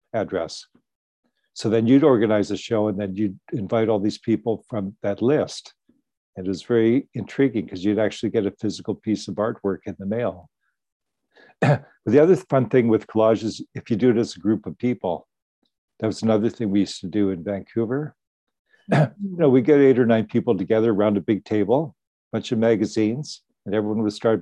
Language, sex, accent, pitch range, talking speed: English, male, American, 100-120 Hz, 195 wpm